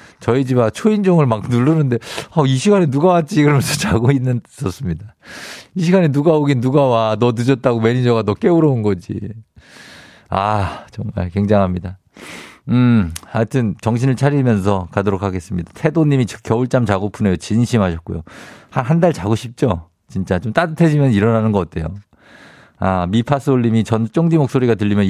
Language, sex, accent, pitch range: Korean, male, native, 100-130 Hz